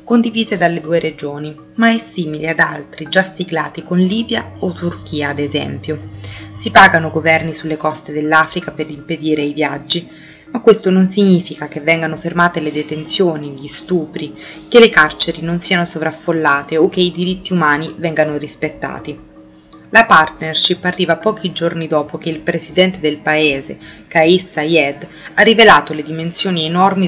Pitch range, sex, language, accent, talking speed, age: 150-175 Hz, female, Italian, native, 155 wpm, 30-49